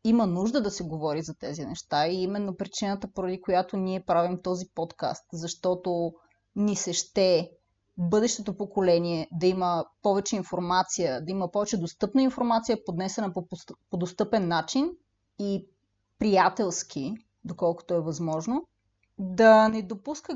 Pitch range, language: 180-235 Hz, Bulgarian